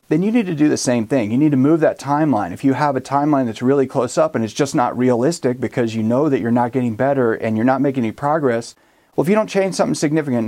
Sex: male